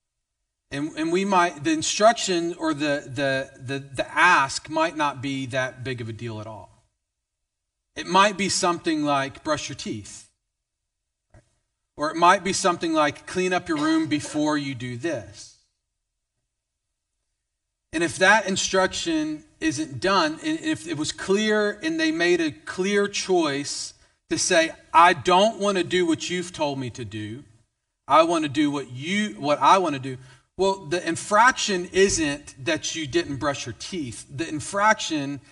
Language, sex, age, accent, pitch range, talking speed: English, male, 40-59, American, 130-200 Hz, 165 wpm